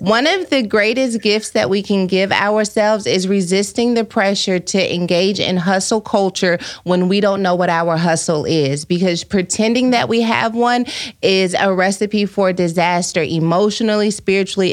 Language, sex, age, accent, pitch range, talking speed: English, female, 30-49, American, 190-230 Hz, 165 wpm